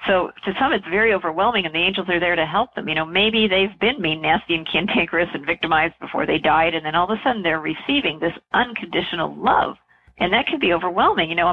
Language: English